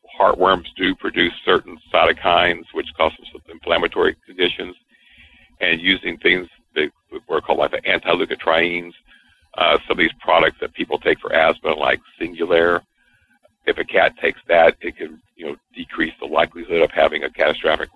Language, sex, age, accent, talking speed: English, male, 60-79, American, 160 wpm